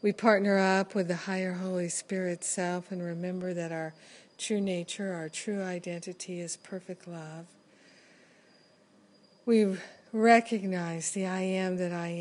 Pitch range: 175-195 Hz